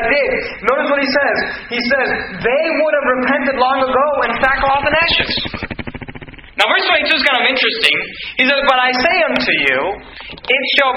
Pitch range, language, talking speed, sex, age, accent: 210-275 Hz, English, 185 wpm, male, 30-49, American